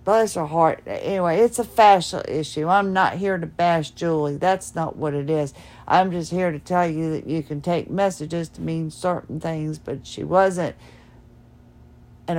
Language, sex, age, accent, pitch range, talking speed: English, female, 50-69, American, 160-185 Hz, 185 wpm